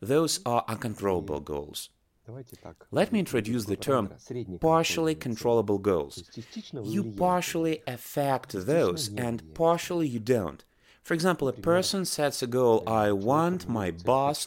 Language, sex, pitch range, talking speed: English, male, 100-150 Hz, 130 wpm